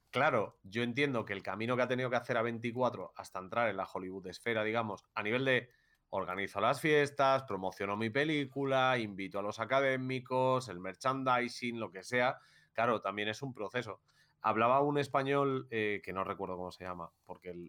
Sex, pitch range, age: male, 110-140 Hz, 30-49